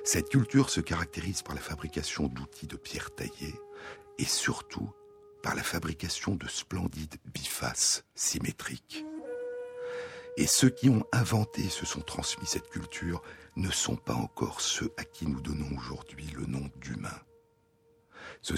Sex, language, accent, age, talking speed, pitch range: male, French, French, 60-79, 145 wpm, 75-105 Hz